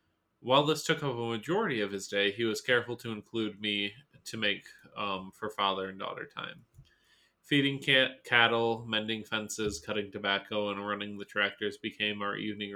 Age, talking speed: 20-39, 170 wpm